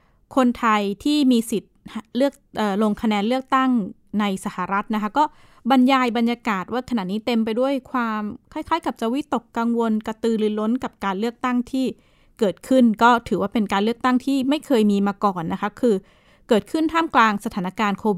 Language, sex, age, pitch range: Thai, female, 20-39, 205-245 Hz